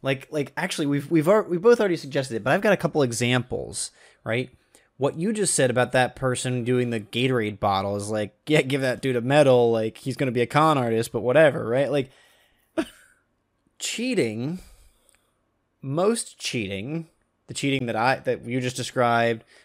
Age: 20-39